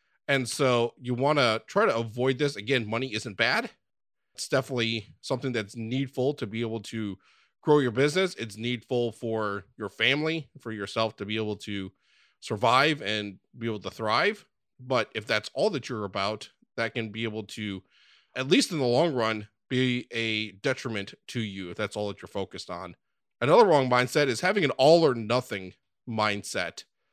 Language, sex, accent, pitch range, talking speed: English, male, American, 110-135 Hz, 180 wpm